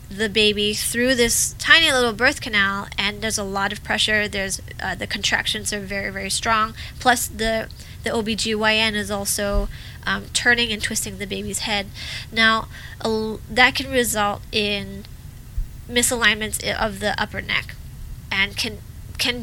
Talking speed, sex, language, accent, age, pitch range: 150 wpm, female, English, American, 20-39, 205-245 Hz